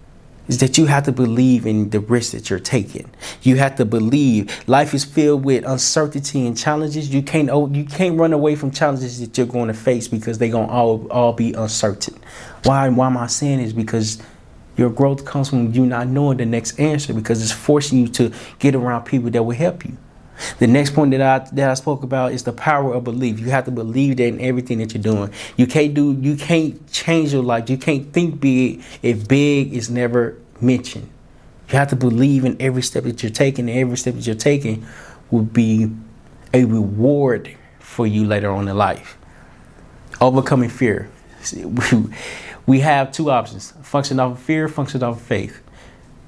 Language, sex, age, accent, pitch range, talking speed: English, male, 20-39, American, 115-140 Hz, 200 wpm